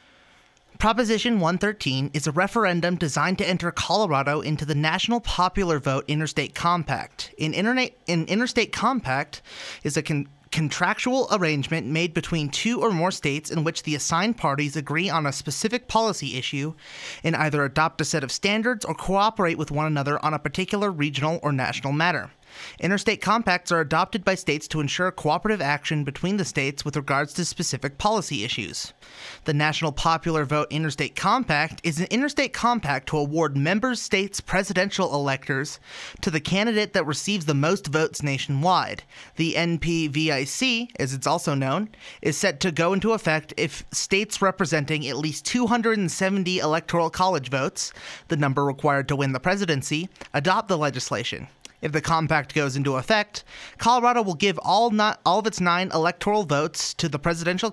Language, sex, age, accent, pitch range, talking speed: English, male, 30-49, American, 145-190 Hz, 160 wpm